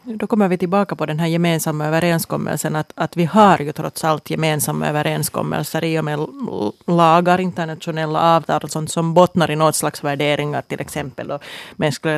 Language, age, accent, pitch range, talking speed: Finnish, 30-49, native, 155-175 Hz, 175 wpm